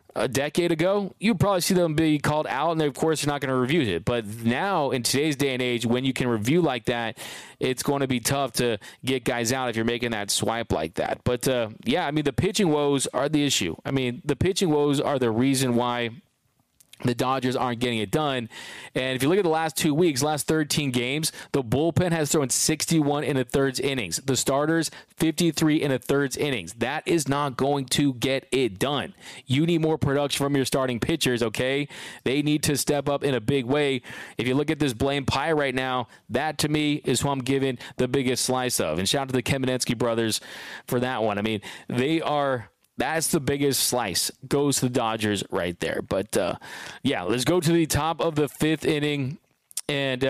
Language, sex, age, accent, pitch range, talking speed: English, male, 30-49, American, 125-150 Hz, 220 wpm